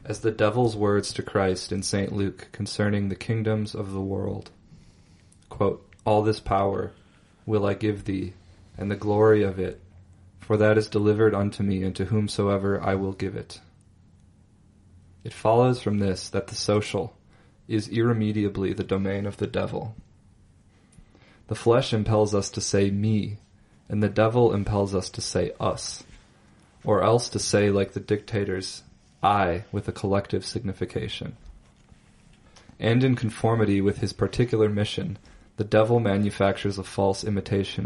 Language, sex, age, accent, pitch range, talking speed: English, male, 20-39, American, 95-105 Hz, 150 wpm